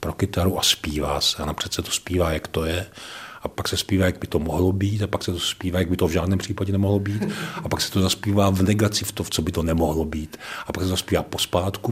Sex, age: male, 40-59